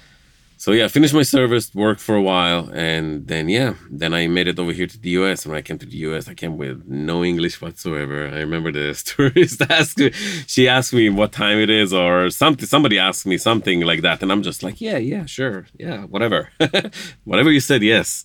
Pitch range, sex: 80-110 Hz, male